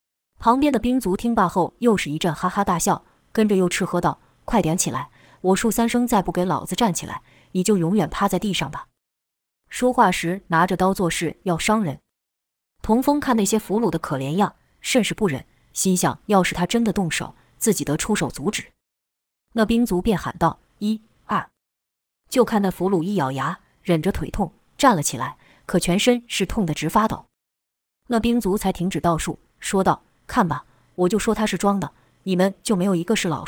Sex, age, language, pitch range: female, 20-39, Chinese, 165-215 Hz